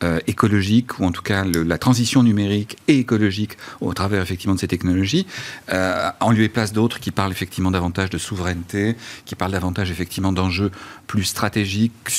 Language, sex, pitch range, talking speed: French, male, 100-130 Hz, 175 wpm